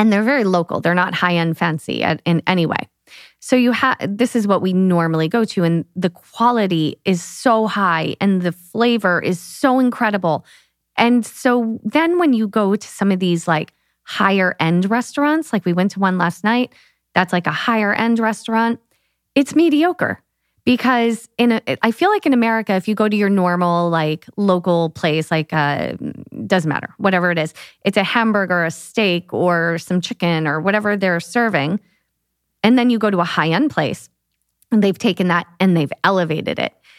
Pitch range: 175-230 Hz